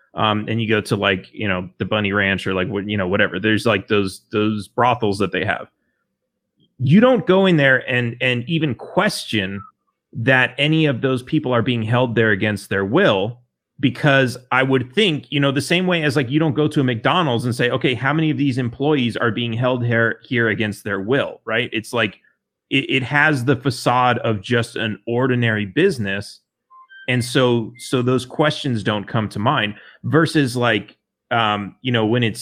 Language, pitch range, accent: English, 105-135 Hz, American